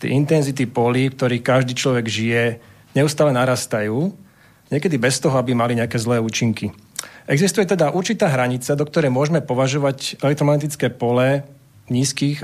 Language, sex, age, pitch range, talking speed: Slovak, male, 40-59, 125-155 Hz, 135 wpm